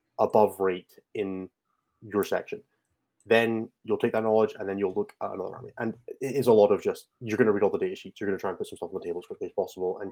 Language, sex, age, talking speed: English, male, 20-39, 285 wpm